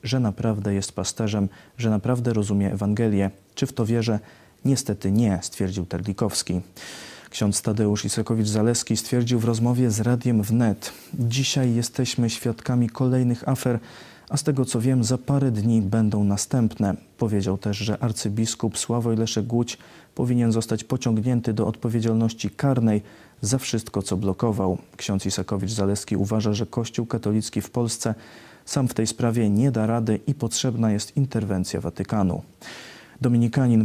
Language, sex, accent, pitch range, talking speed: Polish, male, native, 105-120 Hz, 140 wpm